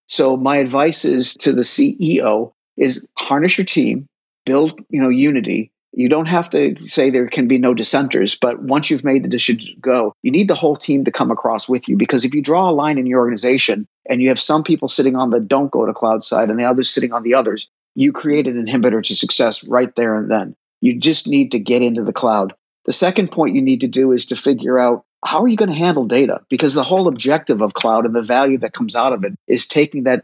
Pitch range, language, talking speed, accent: 120-155 Hz, English, 250 wpm, American